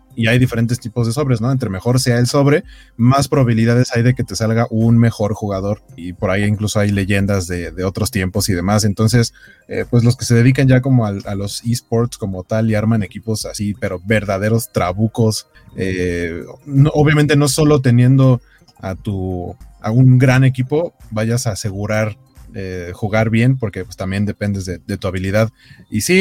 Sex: male